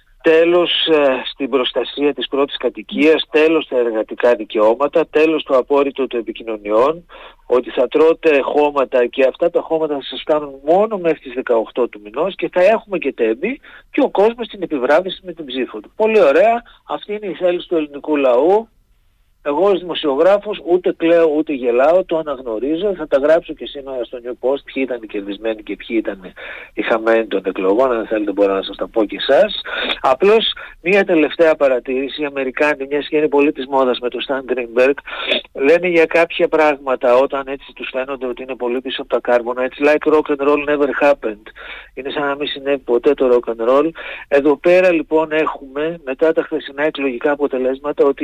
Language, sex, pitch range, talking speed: Greek, male, 130-160 Hz, 185 wpm